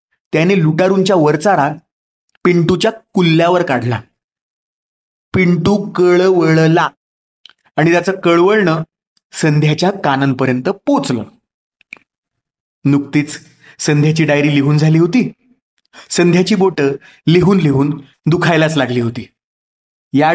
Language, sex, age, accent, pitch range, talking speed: Marathi, male, 30-49, native, 145-190 Hz, 85 wpm